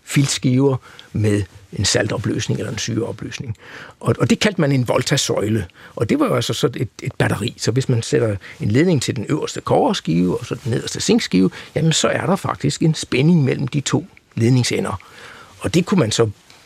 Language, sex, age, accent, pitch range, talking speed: Danish, male, 60-79, native, 110-150 Hz, 190 wpm